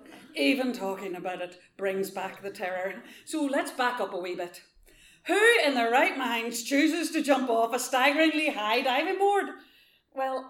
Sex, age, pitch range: female, 40-59, 210-290 Hz